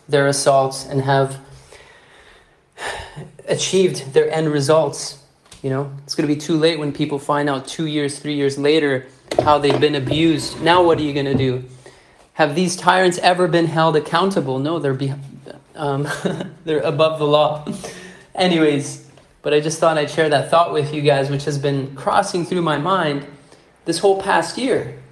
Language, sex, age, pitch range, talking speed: English, male, 30-49, 140-170 Hz, 175 wpm